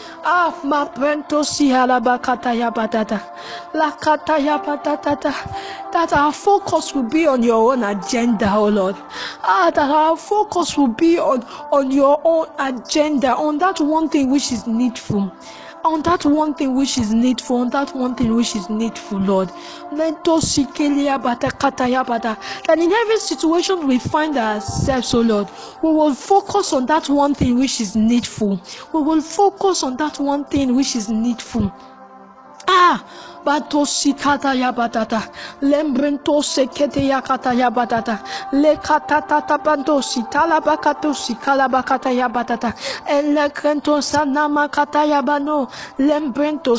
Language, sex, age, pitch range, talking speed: English, female, 10-29, 245-305 Hz, 135 wpm